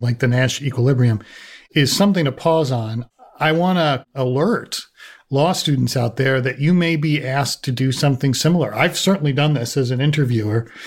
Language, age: English, 40-59